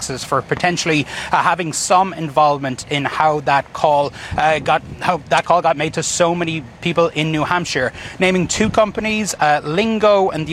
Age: 30-49